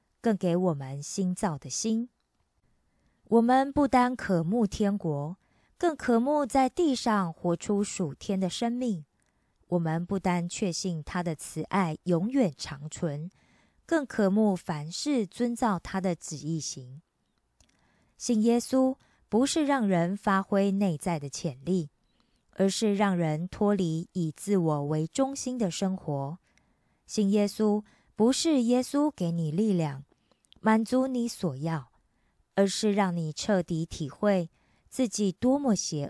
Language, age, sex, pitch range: Korean, 20-39, female, 165-225 Hz